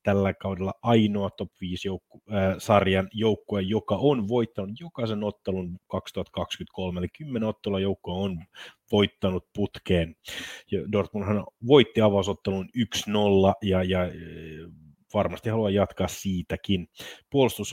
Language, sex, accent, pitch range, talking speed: Finnish, male, native, 95-105 Hz, 105 wpm